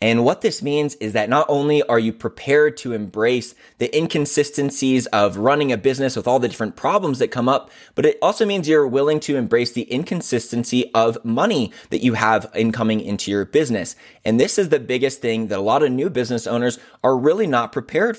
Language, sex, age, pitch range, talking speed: English, male, 20-39, 115-150 Hz, 210 wpm